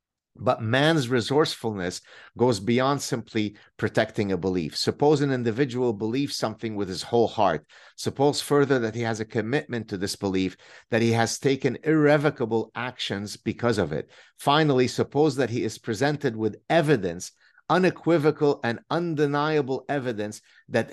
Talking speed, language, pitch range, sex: 145 wpm, English, 115-150 Hz, male